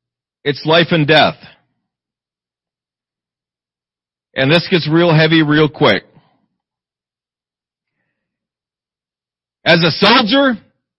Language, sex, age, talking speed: English, male, 40-59, 75 wpm